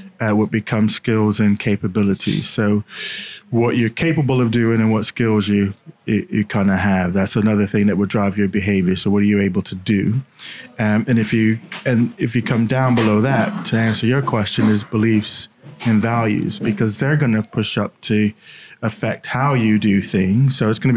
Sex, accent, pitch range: male, British, 105-120 Hz